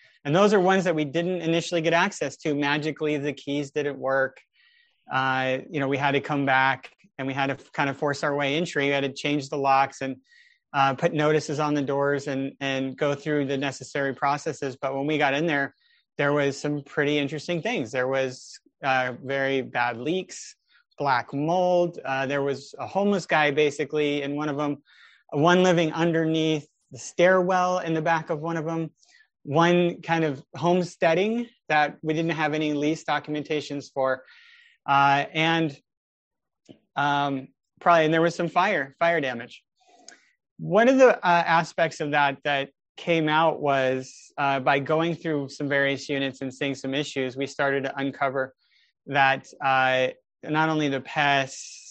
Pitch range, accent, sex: 135-165 Hz, American, male